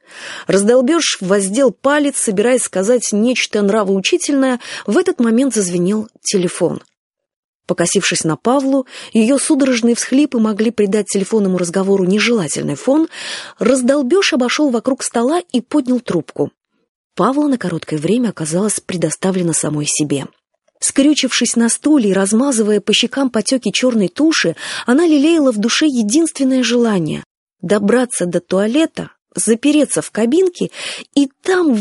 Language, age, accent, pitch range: Russian, 20-39, native, 185-265 Hz